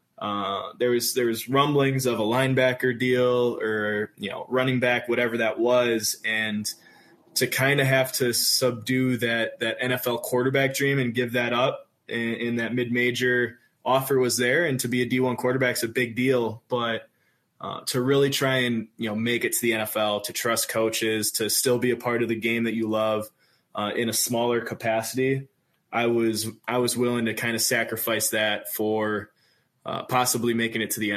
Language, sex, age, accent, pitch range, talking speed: English, male, 20-39, American, 115-125 Hz, 190 wpm